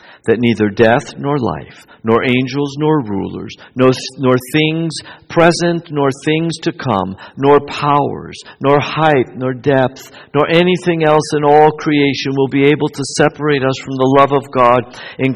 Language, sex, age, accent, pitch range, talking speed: English, male, 60-79, American, 110-145 Hz, 160 wpm